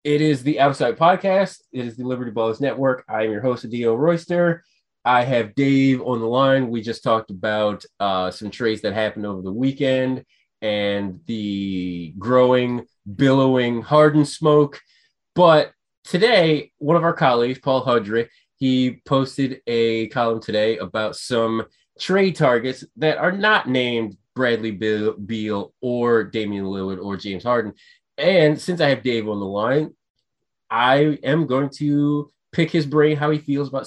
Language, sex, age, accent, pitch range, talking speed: English, male, 20-39, American, 115-150 Hz, 160 wpm